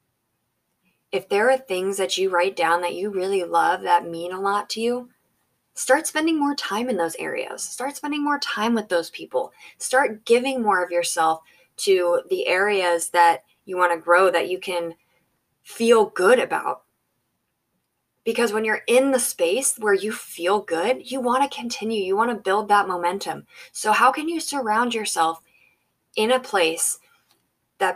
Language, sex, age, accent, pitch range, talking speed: English, female, 20-39, American, 175-275 Hz, 175 wpm